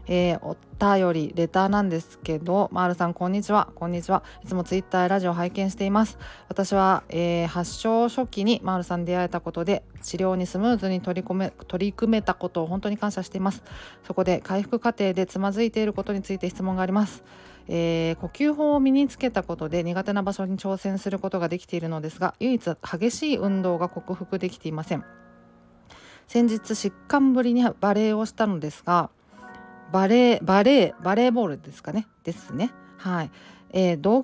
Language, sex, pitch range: Japanese, female, 175-220 Hz